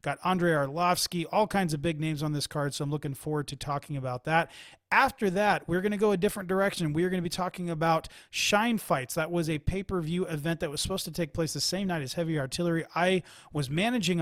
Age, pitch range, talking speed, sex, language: 30-49, 145-175 Hz, 240 wpm, male, English